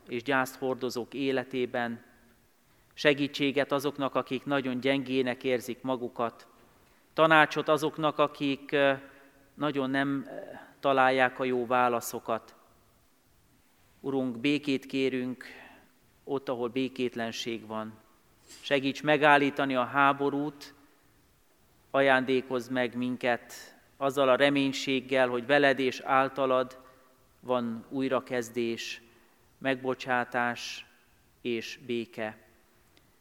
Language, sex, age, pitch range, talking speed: Hungarian, male, 40-59, 120-140 Hz, 85 wpm